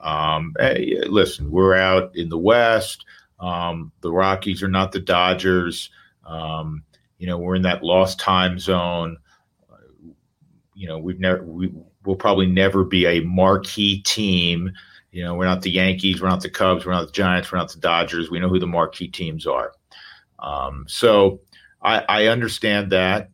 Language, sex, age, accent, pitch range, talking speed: English, male, 40-59, American, 90-100 Hz, 175 wpm